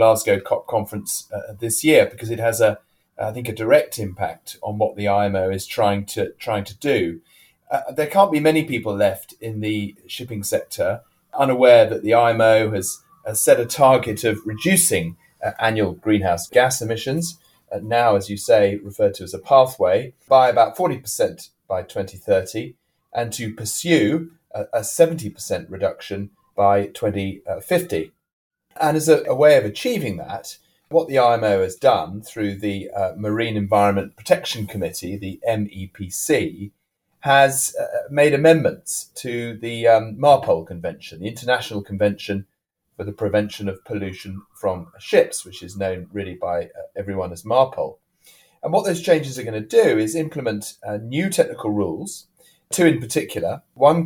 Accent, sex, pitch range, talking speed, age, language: British, male, 100-140 Hz, 160 wpm, 30-49, English